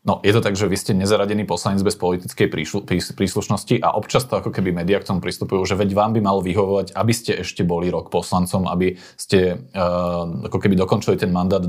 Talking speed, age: 210 wpm, 30-49